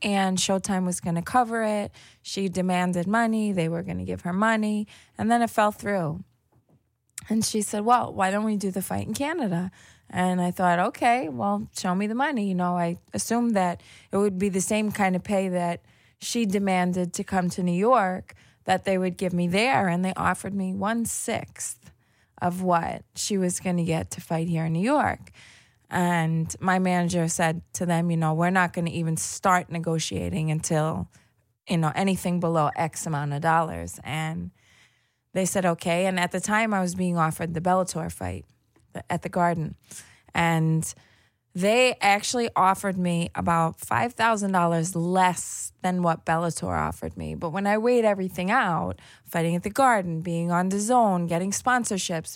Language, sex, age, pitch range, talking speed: English, female, 20-39, 165-205 Hz, 180 wpm